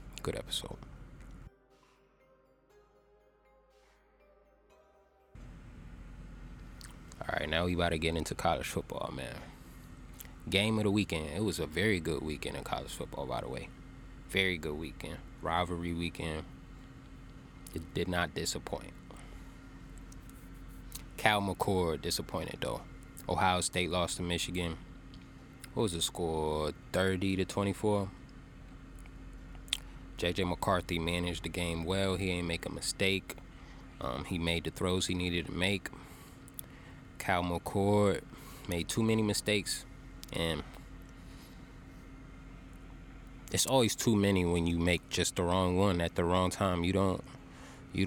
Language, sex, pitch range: English, male, 85-100 Hz